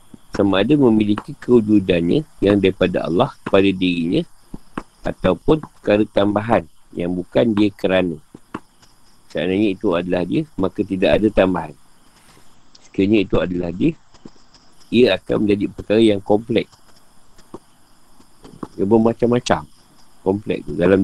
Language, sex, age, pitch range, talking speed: Malay, male, 50-69, 95-115 Hz, 110 wpm